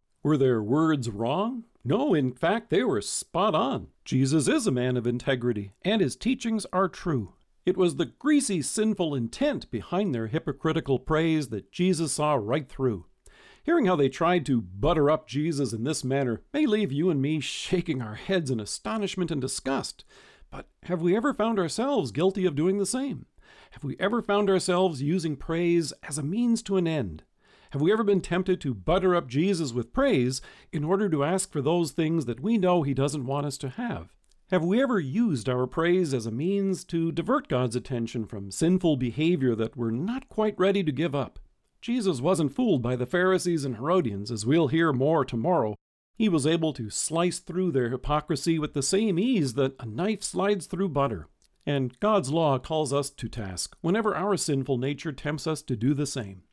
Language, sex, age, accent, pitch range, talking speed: English, male, 50-69, American, 130-185 Hz, 195 wpm